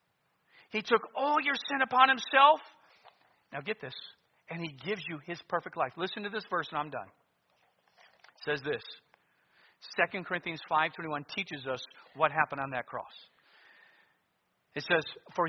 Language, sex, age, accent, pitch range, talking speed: English, male, 50-69, American, 140-180 Hz, 155 wpm